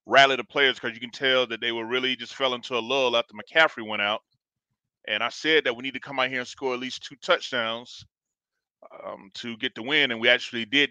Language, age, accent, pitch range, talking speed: English, 30-49, American, 115-140 Hz, 250 wpm